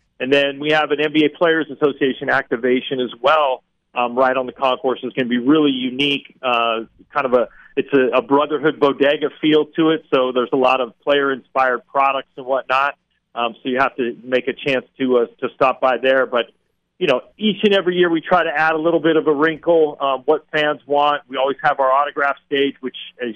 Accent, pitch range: American, 130-145 Hz